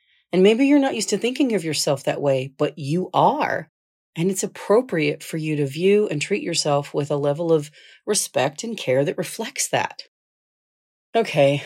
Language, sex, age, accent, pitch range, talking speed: English, female, 40-59, American, 145-185 Hz, 180 wpm